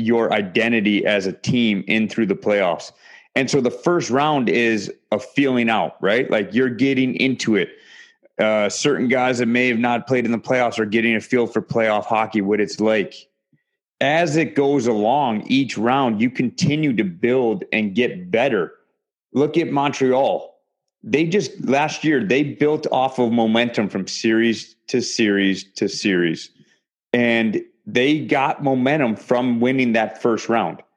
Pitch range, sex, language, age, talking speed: 115-145 Hz, male, English, 30-49, 165 wpm